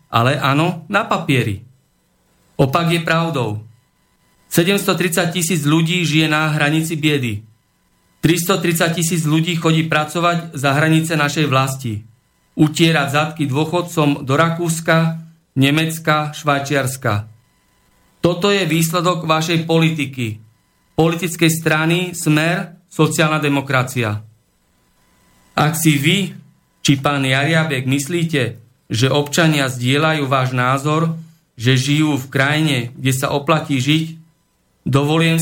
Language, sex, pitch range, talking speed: Slovak, male, 135-160 Hz, 105 wpm